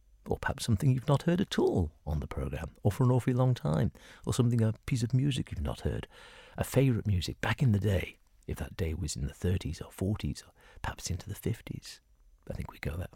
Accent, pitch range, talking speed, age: British, 90-120 Hz, 235 wpm, 50-69